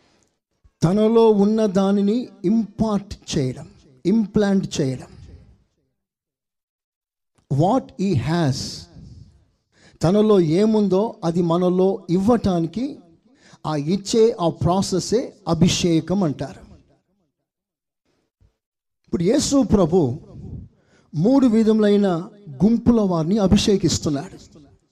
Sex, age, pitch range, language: male, 50-69, 150-195 Hz, Telugu